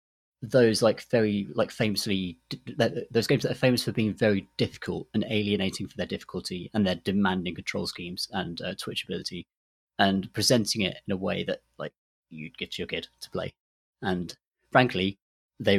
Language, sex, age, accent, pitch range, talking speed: English, male, 30-49, British, 95-115 Hz, 175 wpm